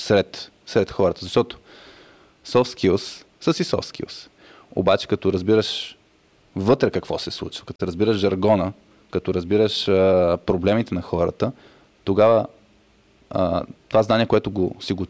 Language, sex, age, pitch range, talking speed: Bulgarian, male, 20-39, 95-110 Hz, 130 wpm